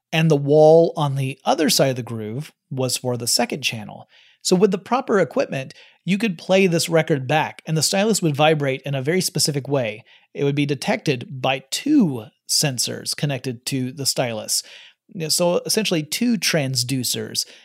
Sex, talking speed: male, 175 wpm